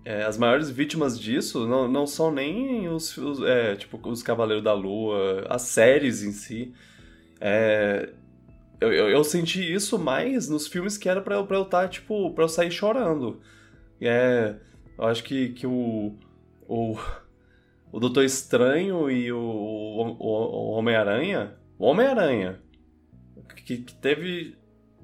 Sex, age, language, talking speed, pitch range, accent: male, 20-39, Portuguese, 150 wpm, 110-165 Hz, Brazilian